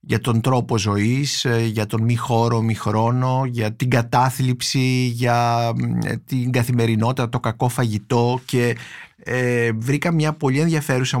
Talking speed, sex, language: 130 wpm, male, Greek